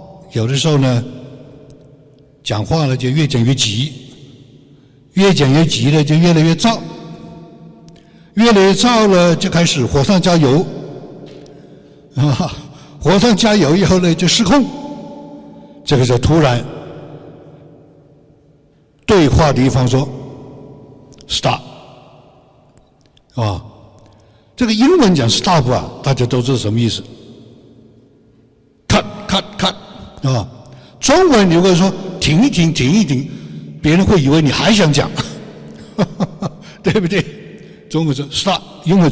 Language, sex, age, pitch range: Chinese, male, 60-79, 125-175 Hz